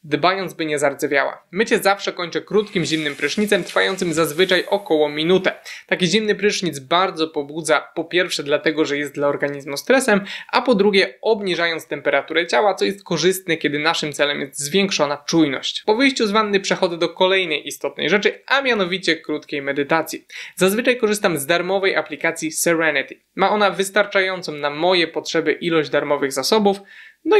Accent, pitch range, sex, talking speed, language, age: native, 155-200 Hz, male, 155 wpm, Polish, 20-39